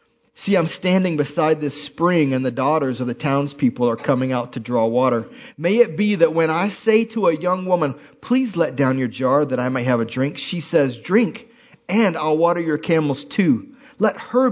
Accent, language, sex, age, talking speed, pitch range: American, English, male, 40-59, 210 wpm, 130-175 Hz